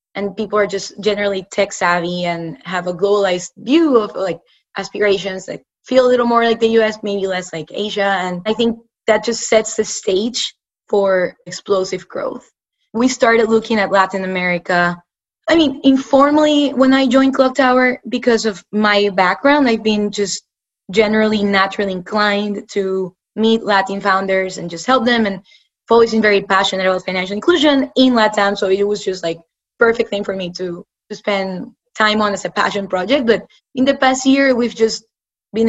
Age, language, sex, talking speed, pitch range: 20-39, English, female, 180 wpm, 190-230 Hz